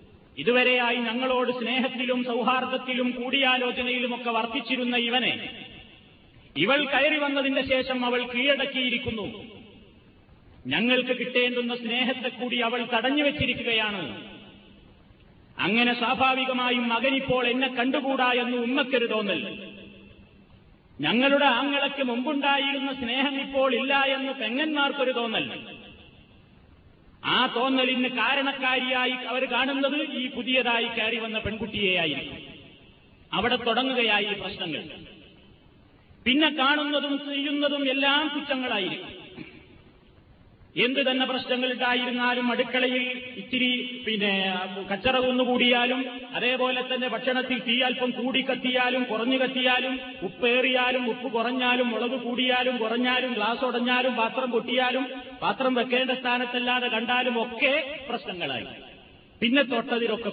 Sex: male